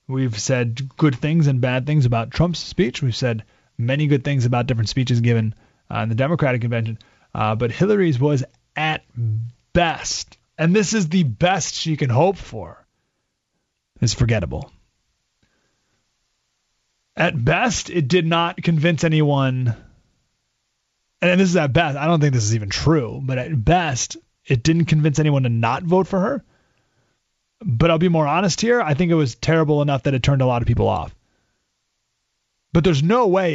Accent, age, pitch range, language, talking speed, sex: American, 30-49, 120-165 Hz, English, 170 wpm, male